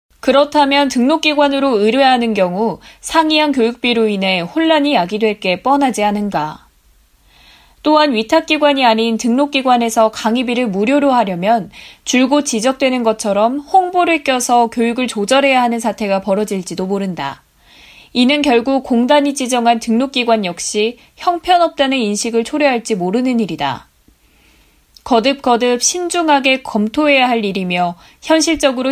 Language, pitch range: Korean, 215-275 Hz